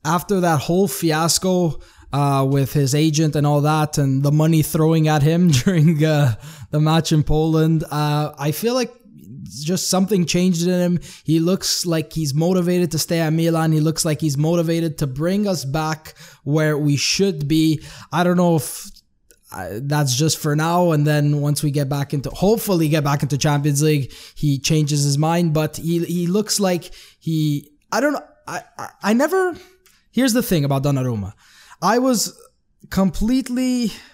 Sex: male